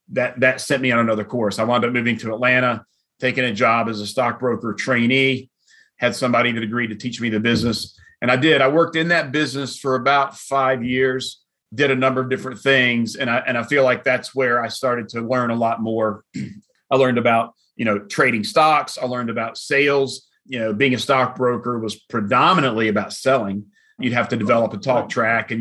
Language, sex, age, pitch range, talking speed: English, male, 40-59, 115-130 Hz, 210 wpm